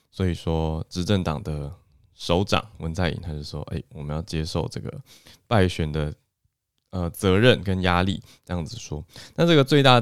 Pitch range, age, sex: 80-110 Hz, 20-39, male